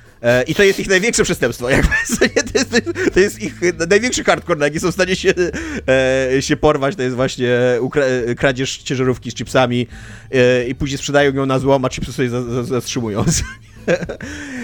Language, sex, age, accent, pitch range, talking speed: Polish, male, 30-49, native, 120-155 Hz, 160 wpm